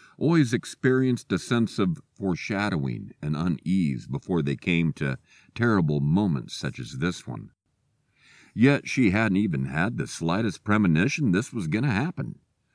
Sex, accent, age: male, American, 50-69